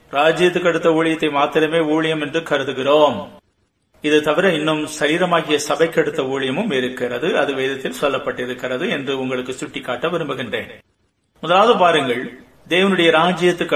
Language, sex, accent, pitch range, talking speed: Tamil, male, native, 140-175 Hz, 115 wpm